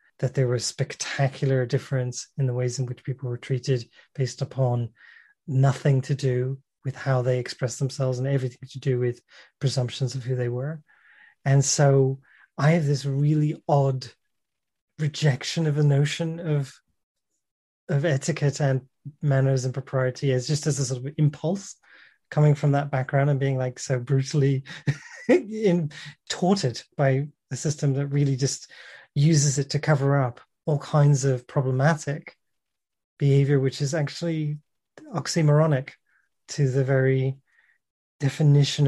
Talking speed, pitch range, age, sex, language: 145 wpm, 130-150 Hz, 30-49, male, English